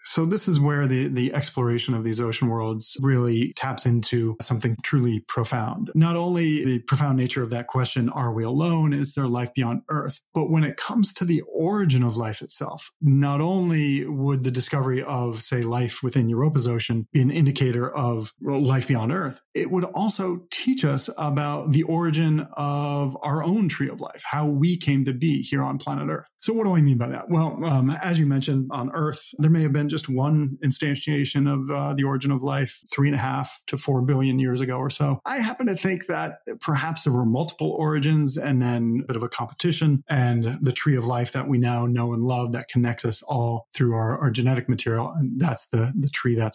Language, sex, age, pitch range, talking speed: English, male, 30-49, 125-150 Hz, 215 wpm